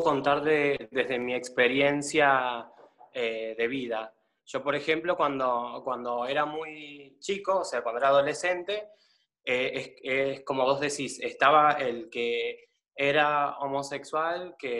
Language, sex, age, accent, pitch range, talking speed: Spanish, male, 20-39, Argentinian, 120-165 Hz, 135 wpm